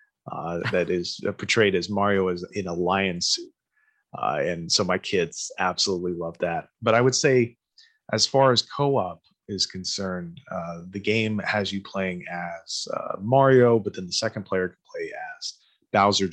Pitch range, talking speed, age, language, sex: 90-125 Hz, 175 wpm, 30-49, English, male